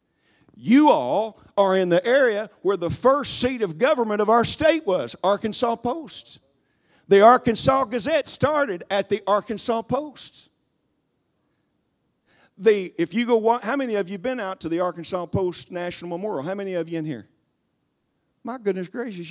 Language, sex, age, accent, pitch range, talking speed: English, male, 50-69, American, 170-235 Hz, 160 wpm